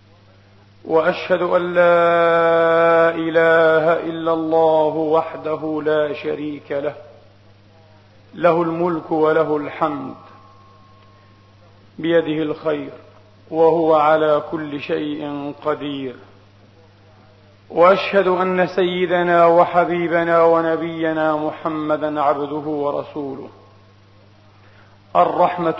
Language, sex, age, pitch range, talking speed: Arabic, male, 40-59, 105-165 Hz, 70 wpm